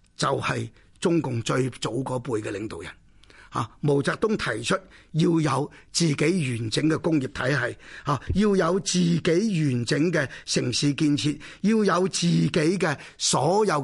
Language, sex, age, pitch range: Chinese, male, 30-49, 145-200 Hz